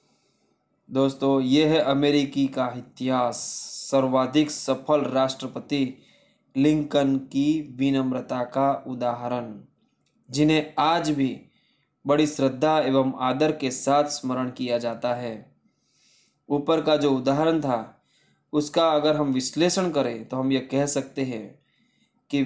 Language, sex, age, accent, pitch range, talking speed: Hindi, male, 20-39, native, 130-150 Hz, 120 wpm